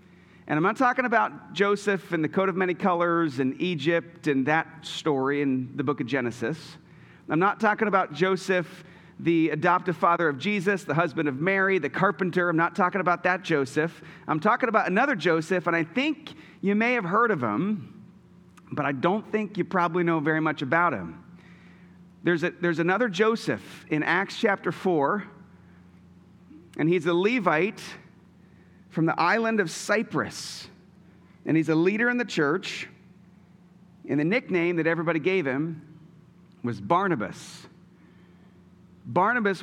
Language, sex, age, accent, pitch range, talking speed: English, male, 40-59, American, 160-205 Hz, 155 wpm